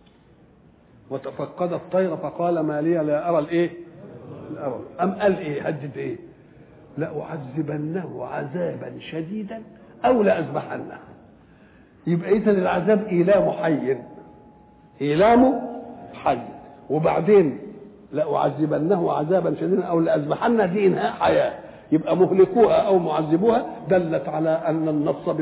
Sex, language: male, French